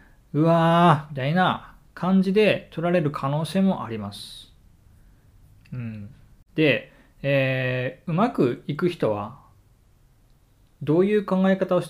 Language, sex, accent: Japanese, male, native